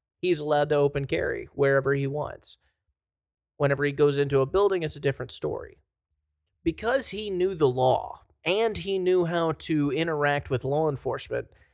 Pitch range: 130-165 Hz